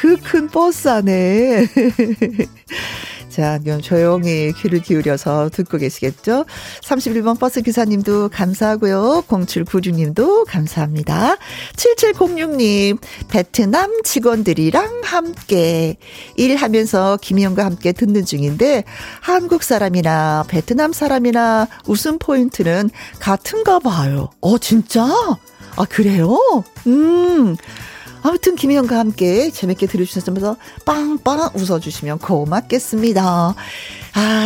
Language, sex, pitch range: Korean, female, 175-280 Hz